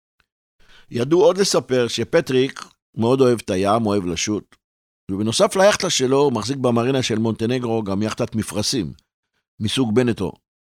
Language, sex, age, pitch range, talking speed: Hebrew, male, 50-69, 95-120 Hz, 130 wpm